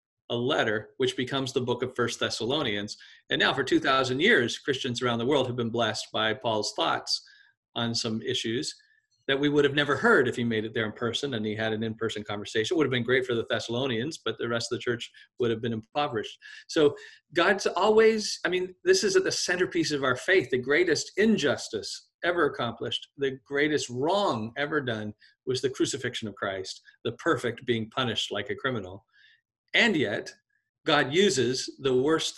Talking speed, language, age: 195 wpm, English, 40-59